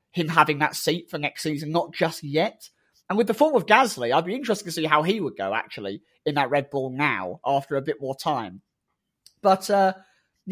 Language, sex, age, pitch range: English, male, 30-49, 140-185 Hz